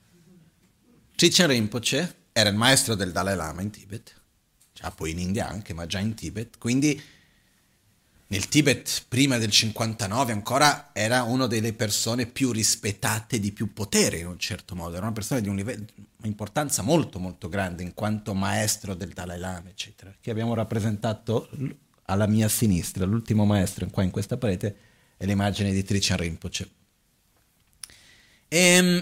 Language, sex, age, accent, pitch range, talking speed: Italian, male, 40-59, native, 100-130 Hz, 155 wpm